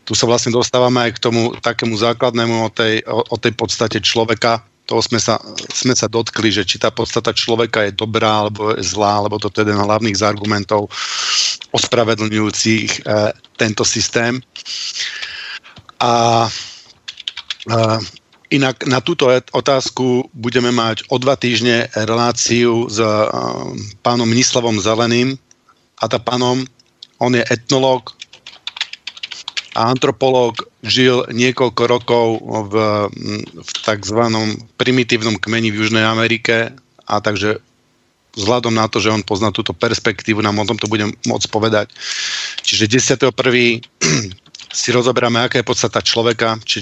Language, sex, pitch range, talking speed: Slovak, male, 110-120 Hz, 135 wpm